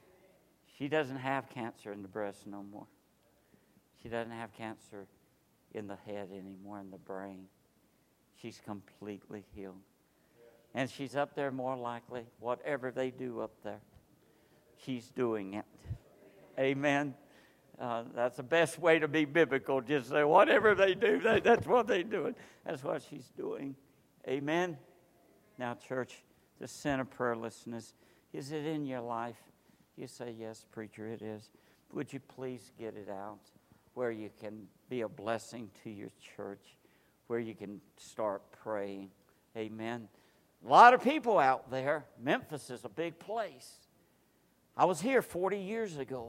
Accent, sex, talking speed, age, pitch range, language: American, male, 150 wpm, 60-79, 110-145 Hz, English